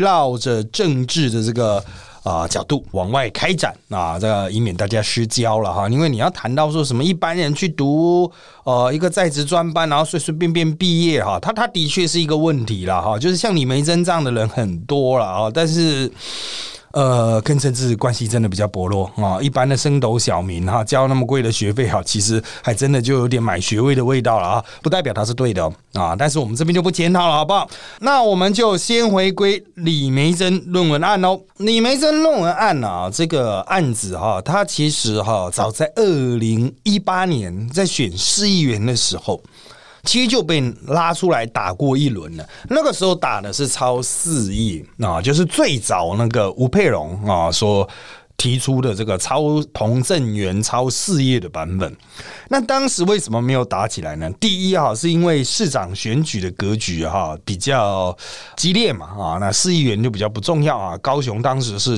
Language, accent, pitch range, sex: Chinese, native, 110-170 Hz, male